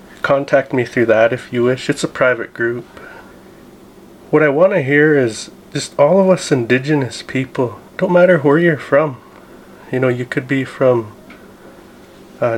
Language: English